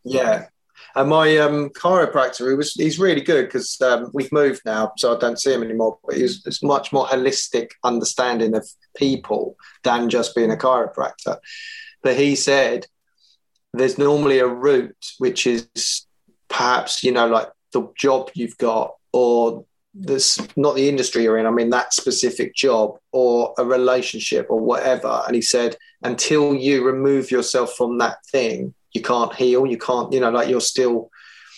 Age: 20-39